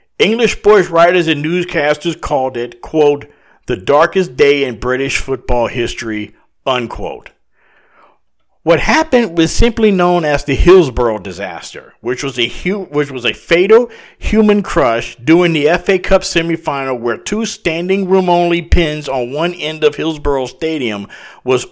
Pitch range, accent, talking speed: 135-185 Hz, American, 145 wpm